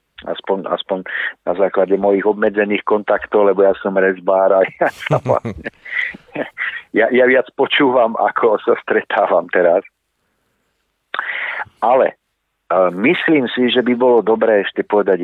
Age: 50-69